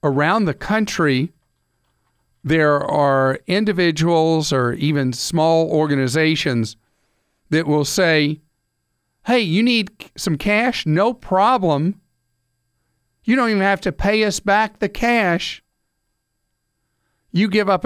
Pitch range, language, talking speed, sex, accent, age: 140-180 Hz, English, 110 wpm, male, American, 50-69